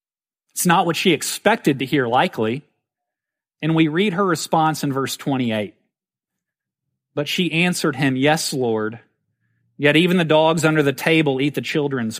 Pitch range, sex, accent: 145-200 Hz, male, American